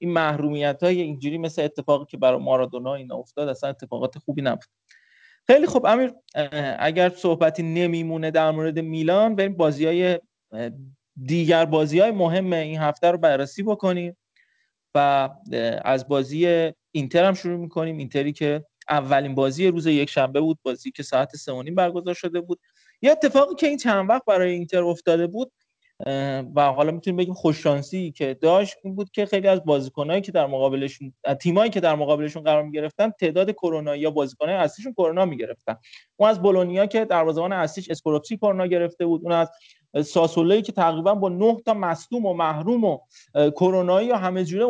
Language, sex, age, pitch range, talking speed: Persian, male, 30-49, 150-195 Hz, 165 wpm